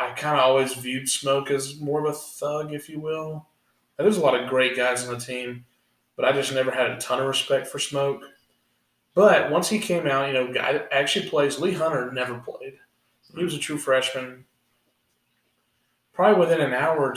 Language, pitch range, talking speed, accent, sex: English, 120-135 Hz, 215 wpm, American, male